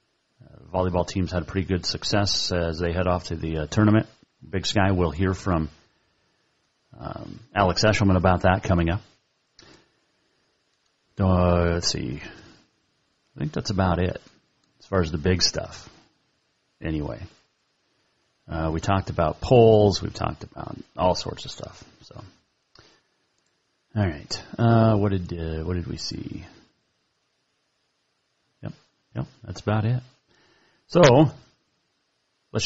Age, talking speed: 30-49, 130 wpm